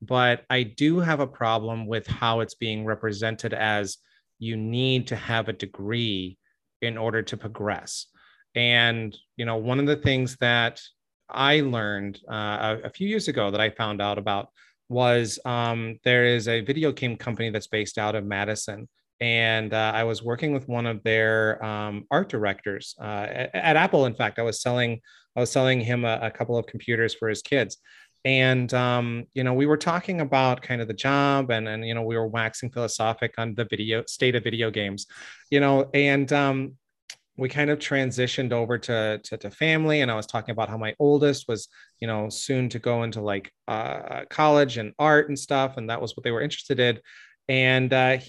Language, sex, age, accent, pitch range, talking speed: English, male, 30-49, American, 110-135 Hz, 200 wpm